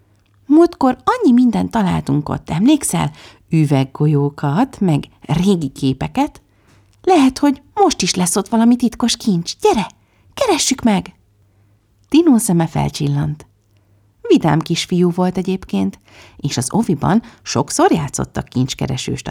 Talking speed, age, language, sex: 110 wpm, 30-49, Hungarian, female